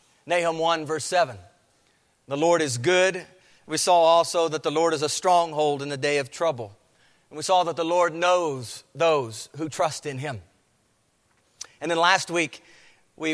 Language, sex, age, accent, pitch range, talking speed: English, male, 50-69, American, 145-185 Hz, 175 wpm